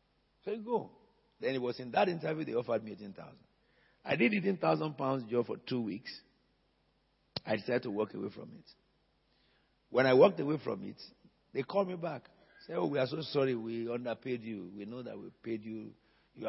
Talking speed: 205 wpm